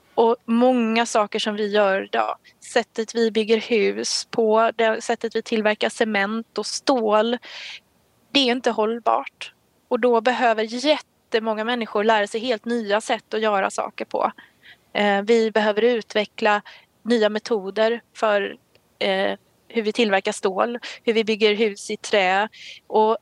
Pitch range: 205-235 Hz